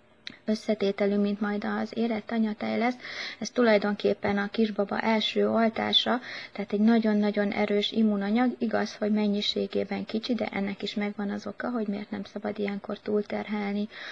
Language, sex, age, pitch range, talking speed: Hungarian, female, 20-39, 200-220 Hz, 145 wpm